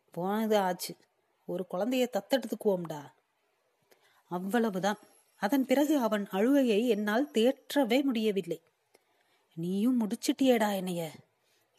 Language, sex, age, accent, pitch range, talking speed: Tamil, female, 30-49, native, 190-250 Hz, 80 wpm